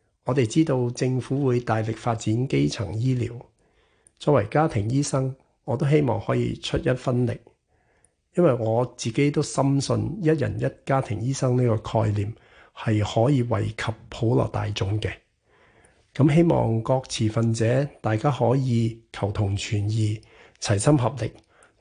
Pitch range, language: 110-130 Hz, Chinese